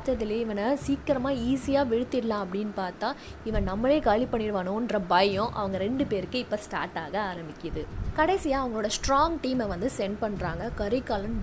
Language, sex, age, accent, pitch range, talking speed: Tamil, female, 20-39, native, 205-265 Hz, 120 wpm